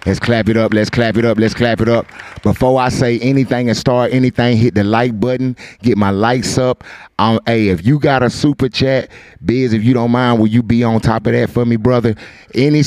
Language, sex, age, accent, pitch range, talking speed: English, male, 30-49, American, 110-130 Hz, 240 wpm